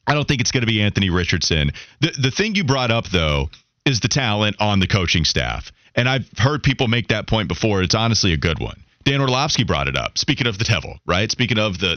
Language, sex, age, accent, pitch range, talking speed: English, male, 30-49, American, 90-130 Hz, 245 wpm